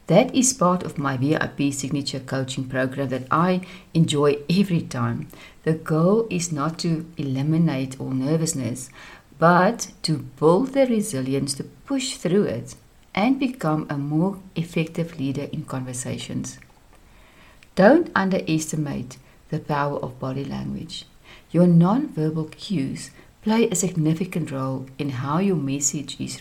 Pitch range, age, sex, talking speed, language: 140-200 Hz, 60-79, female, 130 wpm, English